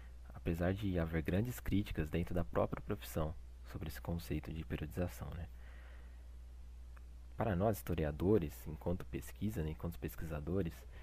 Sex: male